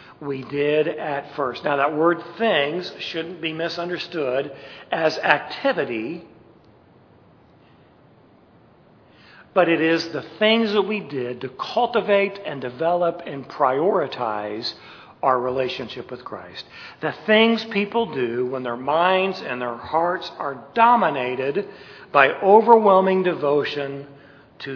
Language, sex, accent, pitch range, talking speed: English, male, American, 140-190 Hz, 115 wpm